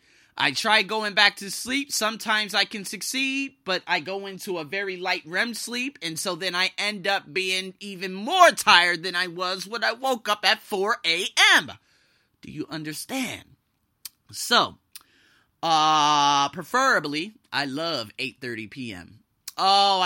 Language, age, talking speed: English, 30-49, 150 wpm